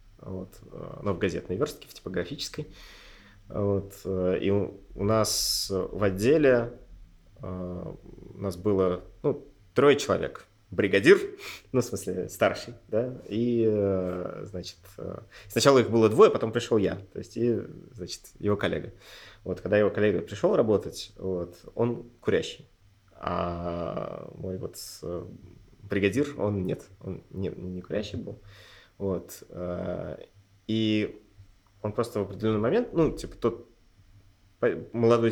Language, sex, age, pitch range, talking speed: Russian, male, 20-39, 95-115 Hz, 120 wpm